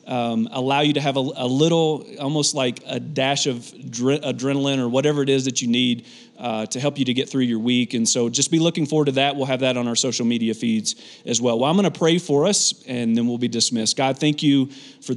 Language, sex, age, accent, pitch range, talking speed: English, male, 40-59, American, 120-140 Hz, 255 wpm